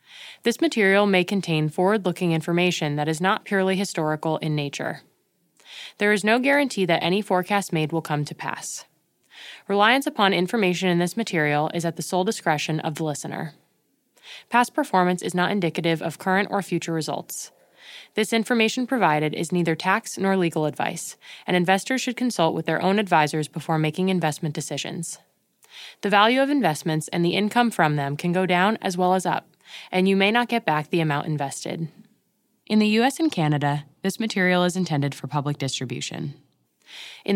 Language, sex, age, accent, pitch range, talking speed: English, female, 20-39, American, 160-200 Hz, 175 wpm